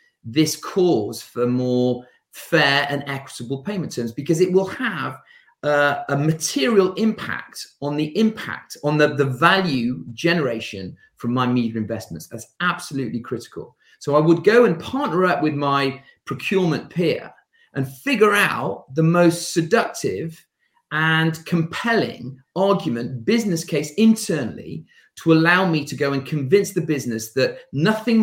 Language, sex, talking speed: English, male, 140 wpm